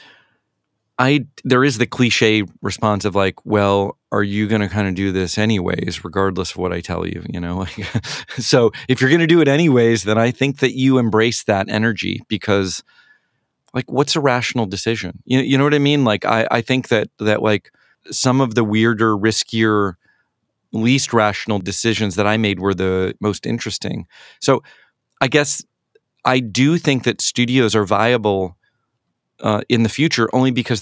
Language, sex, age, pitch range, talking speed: English, male, 30-49, 100-120 Hz, 180 wpm